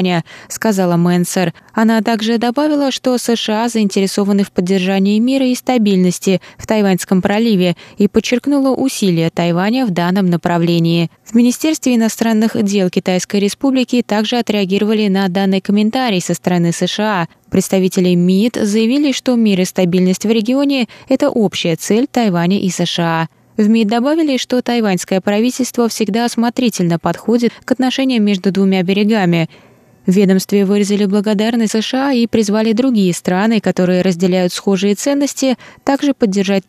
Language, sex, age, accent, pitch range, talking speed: Russian, female, 20-39, native, 190-240 Hz, 135 wpm